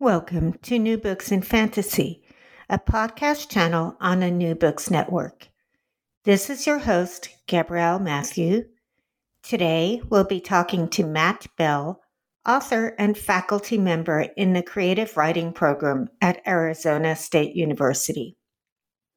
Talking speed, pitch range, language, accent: 125 wpm, 165-210 Hz, English, American